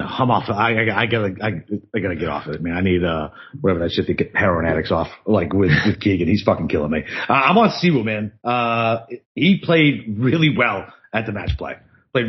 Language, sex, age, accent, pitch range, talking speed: English, male, 40-59, American, 100-135 Hz, 235 wpm